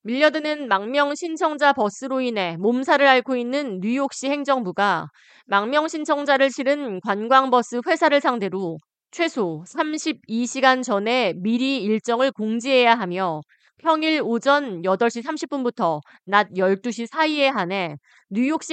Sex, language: female, Korean